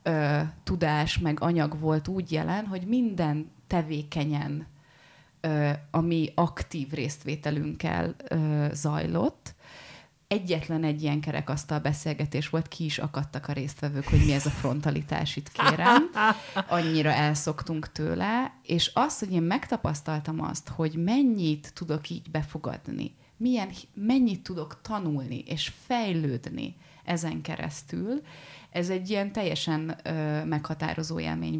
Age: 30-49